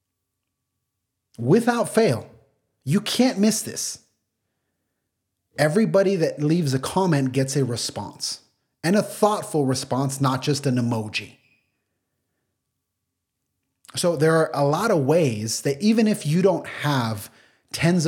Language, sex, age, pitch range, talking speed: English, male, 30-49, 130-170 Hz, 120 wpm